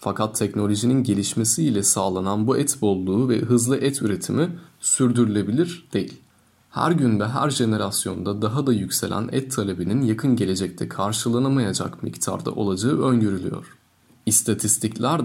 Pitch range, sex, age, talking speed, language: 105-130 Hz, male, 30-49, 120 wpm, Turkish